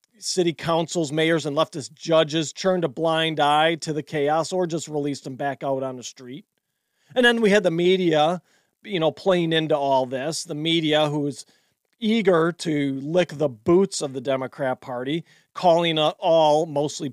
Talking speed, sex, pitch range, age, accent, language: 175 wpm, male, 150-200 Hz, 40-59, American, English